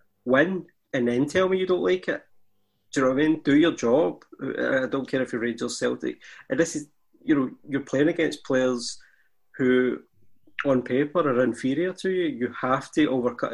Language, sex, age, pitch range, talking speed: English, male, 20-39, 125-150 Hz, 195 wpm